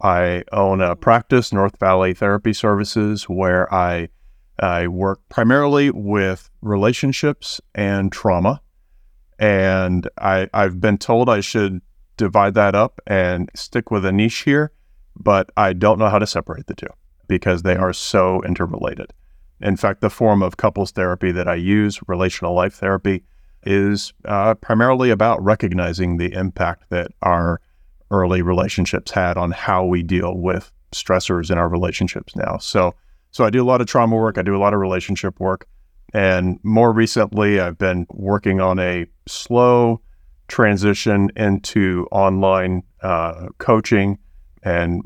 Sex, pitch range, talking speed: male, 90-105 Hz, 150 wpm